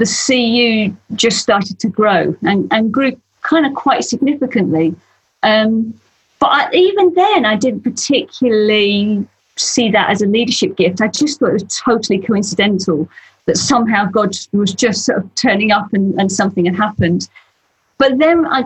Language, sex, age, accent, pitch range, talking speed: English, female, 40-59, British, 195-245 Hz, 165 wpm